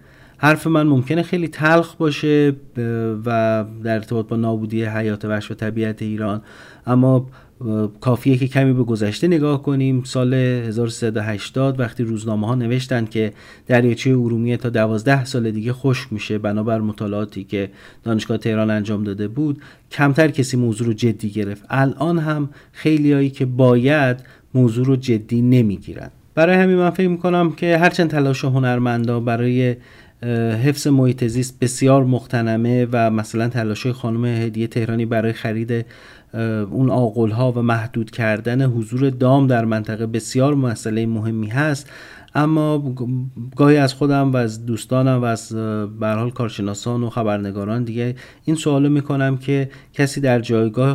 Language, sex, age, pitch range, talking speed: Persian, male, 40-59, 110-135 Hz, 135 wpm